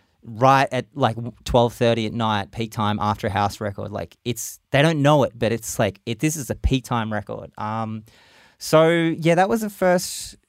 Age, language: 30-49, English